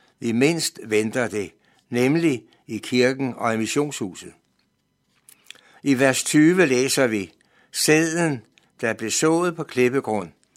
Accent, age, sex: native, 60-79, male